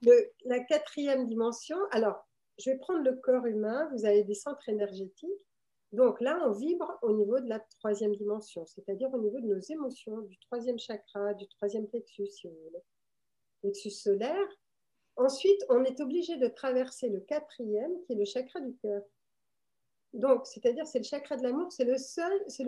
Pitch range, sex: 205-275 Hz, female